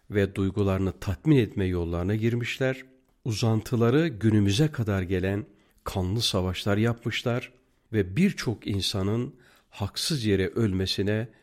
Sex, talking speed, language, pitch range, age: male, 100 wpm, Turkish, 95-130 Hz, 50-69